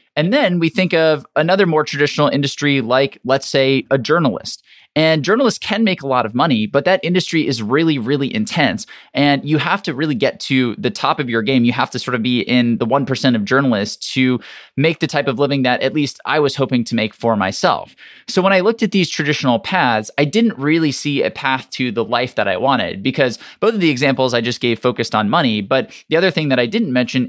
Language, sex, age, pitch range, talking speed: English, male, 20-39, 125-155 Hz, 235 wpm